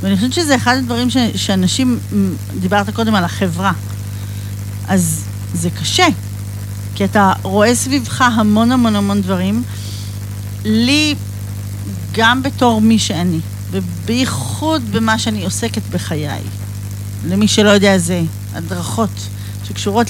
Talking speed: 115 wpm